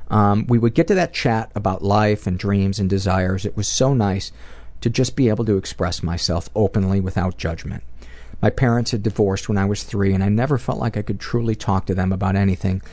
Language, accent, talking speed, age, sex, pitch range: English, American, 225 wpm, 50-69, male, 90-105 Hz